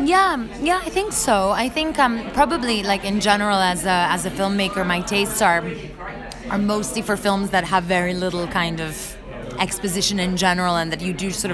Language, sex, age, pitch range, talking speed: English, female, 20-39, 170-210 Hz, 200 wpm